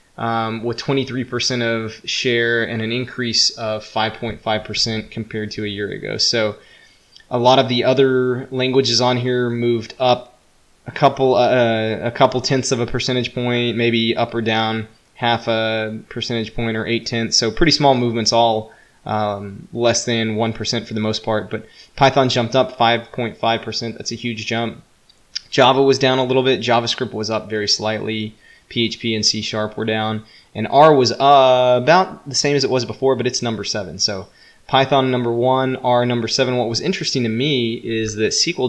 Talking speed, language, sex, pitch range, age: 180 wpm, English, male, 110-125 Hz, 20-39